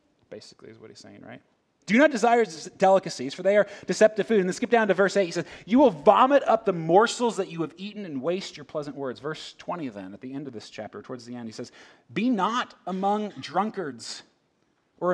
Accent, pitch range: American, 130-205 Hz